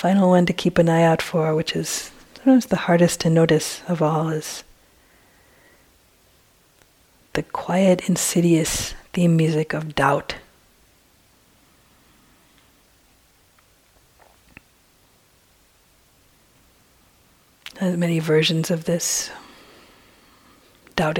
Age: 40-59